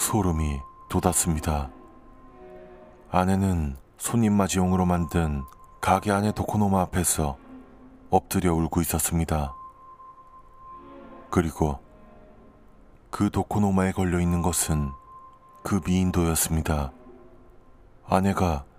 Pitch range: 85-115 Hz